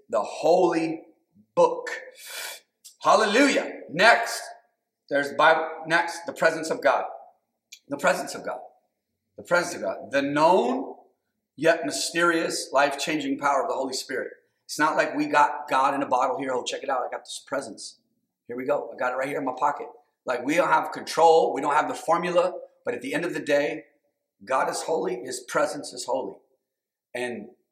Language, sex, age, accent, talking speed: English, male, 40-59, American, 180 wpm